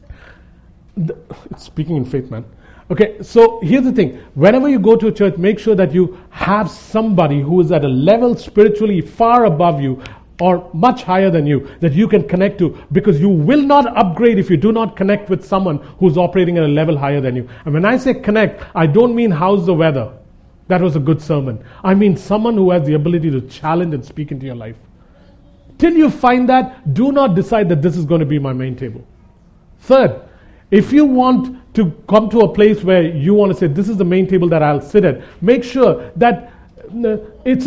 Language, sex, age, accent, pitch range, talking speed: English, male, 40-59, Indian, 155-230 Hz, 210 wpm